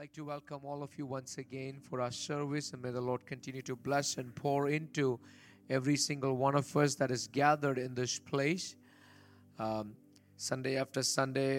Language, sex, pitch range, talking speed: English, male, 125-145 Hz, 190 wpm